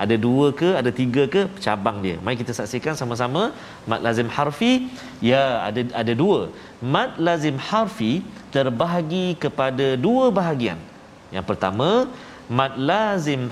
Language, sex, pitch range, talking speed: Malayalam, male, 130-195 Hz, 135 wpm